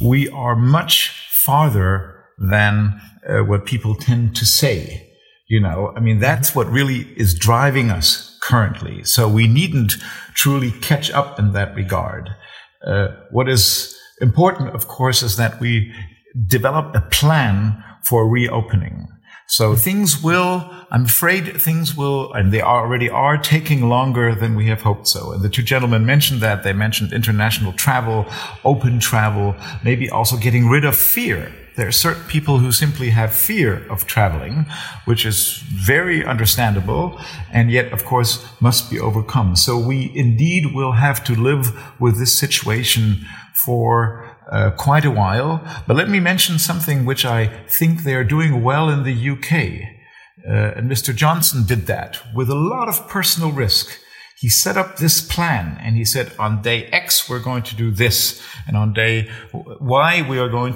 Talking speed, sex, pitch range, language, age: 165 wpm, male, 110-140 Hz, German, 50-69